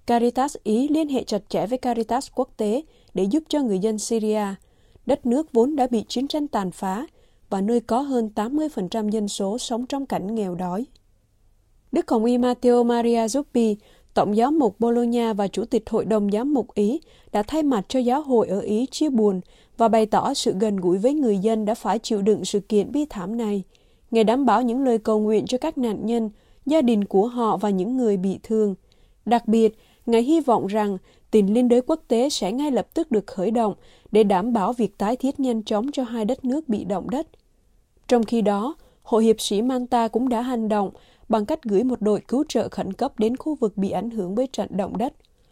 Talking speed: 220 wpm